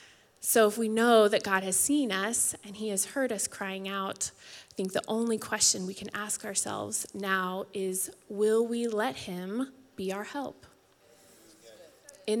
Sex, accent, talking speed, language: female, American, 170 wpm, English